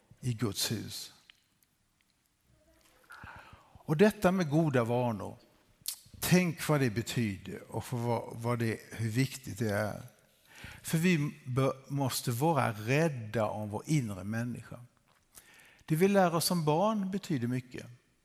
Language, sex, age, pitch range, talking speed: Swedish, male, 50-69, 115-160 Hz, 125 wpm